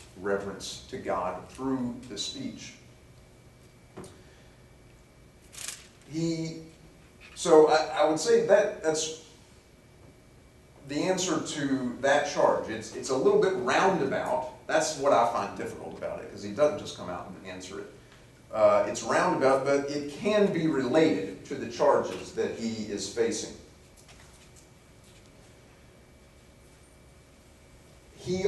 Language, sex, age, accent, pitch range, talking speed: English, male, 40-59, American, 115-195 Hz, 120 wpm